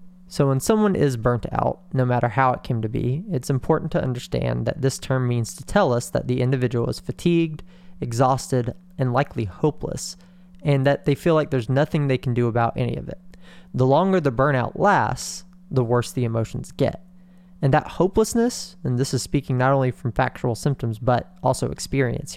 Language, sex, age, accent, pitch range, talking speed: English, male, 20-39, American, 125-170 Hz, 195 wpm